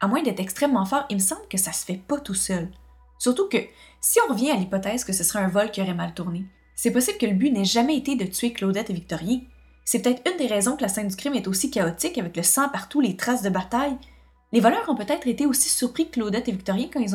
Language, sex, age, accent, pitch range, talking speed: French, female, 20-39, Canadian, 190-255 Hz, 275 wpm